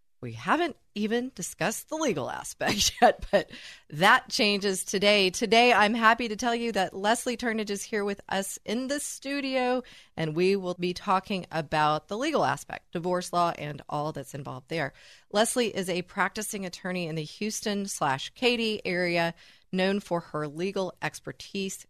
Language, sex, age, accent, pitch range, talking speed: English, female, 30-49, American, 150-205 Hz, 165 wpm